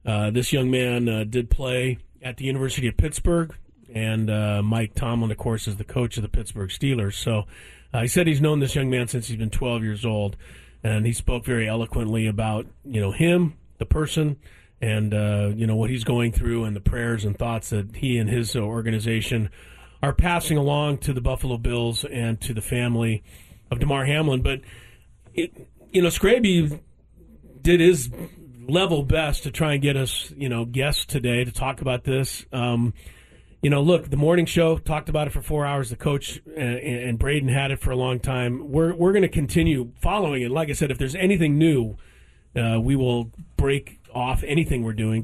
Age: 40-59